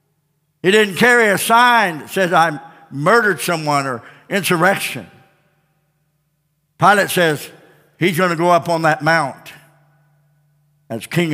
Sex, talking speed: male, 125 wpm